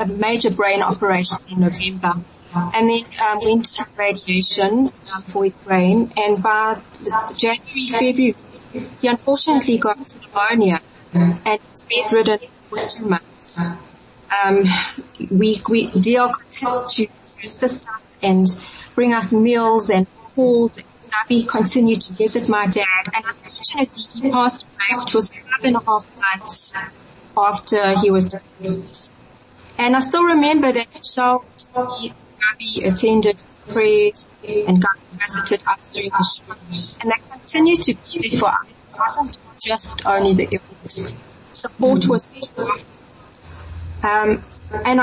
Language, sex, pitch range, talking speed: English, female, 195-245 Hz, 135 wpm